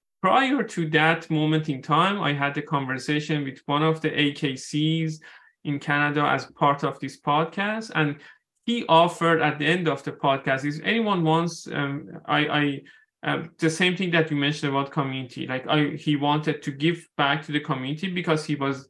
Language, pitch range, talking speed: English, 140-165 Hz, 185 wpm